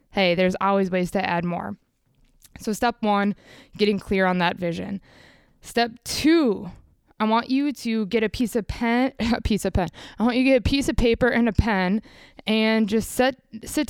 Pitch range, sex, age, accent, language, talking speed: 185-225 Hz, female, 20-39, American, English, 195 wpm